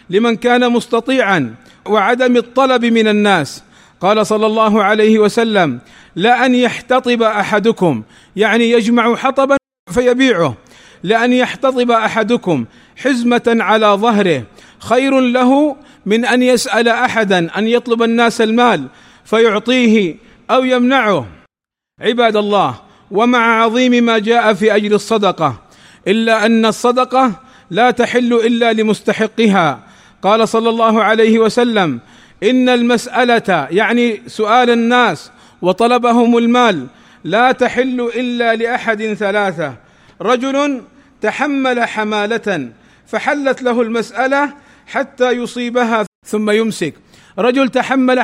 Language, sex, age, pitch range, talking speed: Arabic, male, 40-59, 215-245 Hz, 105 wpm